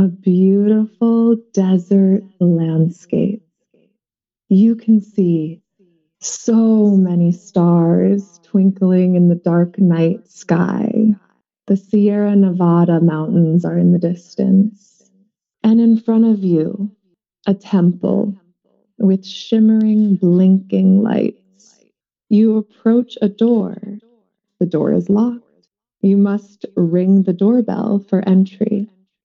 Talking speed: 105 wpm